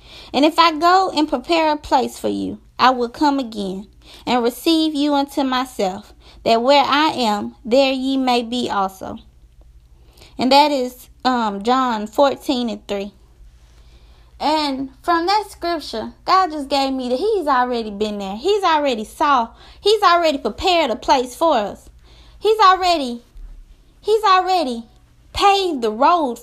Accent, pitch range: American, 235-330 Hz